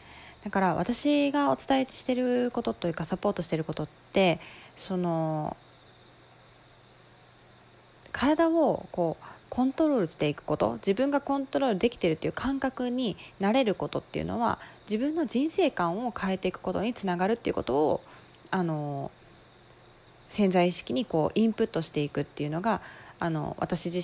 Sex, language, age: female, Japanese, 20-39